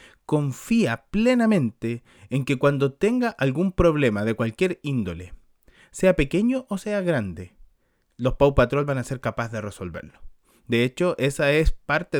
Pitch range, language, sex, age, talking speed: 115-165 Hz, Spanish, male, 30-49, 150 wpm